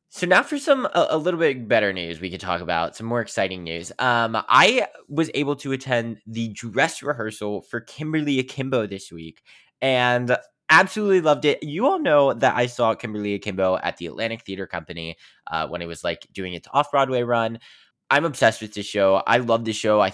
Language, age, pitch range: English, 20-39, 100-130 Hz